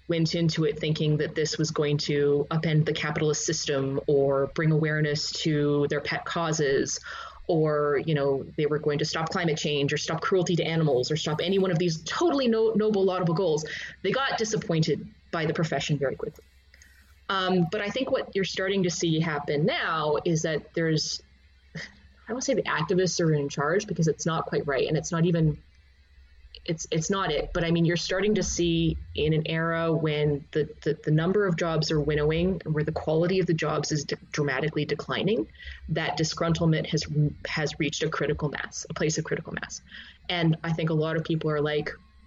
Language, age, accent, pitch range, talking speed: English, 20-39, American, 145-170 Hz, 200 wpm